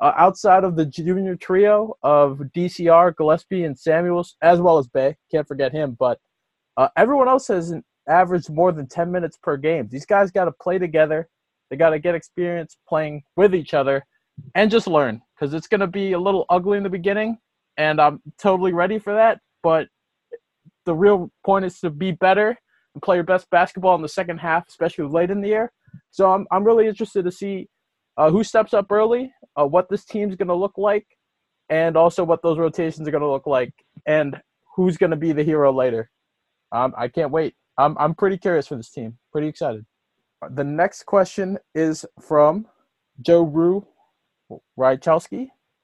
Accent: American